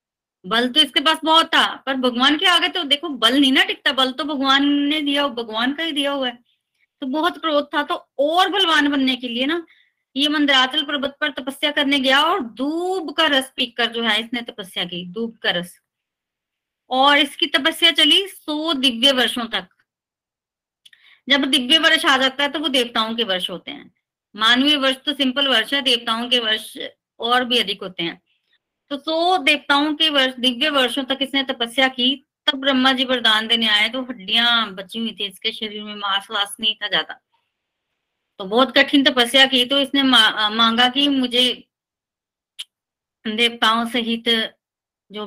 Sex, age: female, 30-49